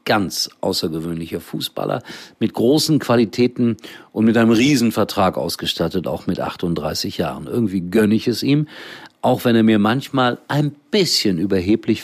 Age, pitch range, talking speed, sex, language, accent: 50-69, 90-130 Hz, 140 wpm, male, German, German